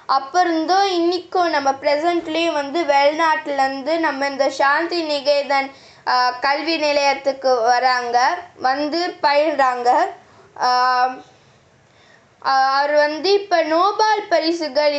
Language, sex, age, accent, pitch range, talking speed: Tamil, female, 20-39, native, 280-345 Hz, 85 wpm